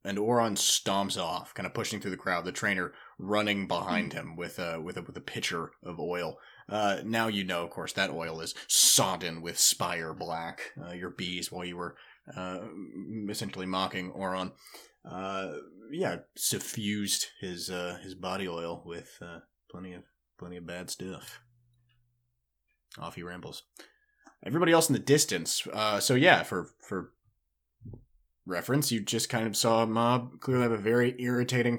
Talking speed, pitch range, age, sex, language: 170 wpm, 85-115 Hz, 20-39, male, English